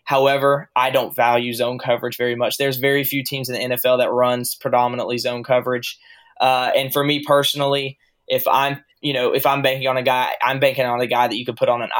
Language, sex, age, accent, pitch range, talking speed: English, male, 10-29, American, 125-140 Hz, 230 wpm